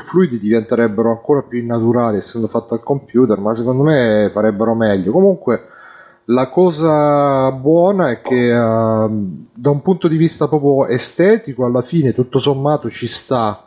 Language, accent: Italian, native